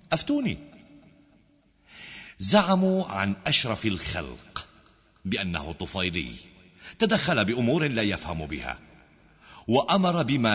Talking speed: 80 wpm